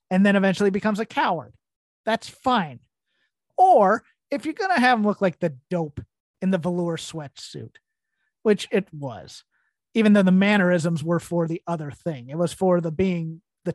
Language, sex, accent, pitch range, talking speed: English, male, American, 175-235 Hz, 180 wpm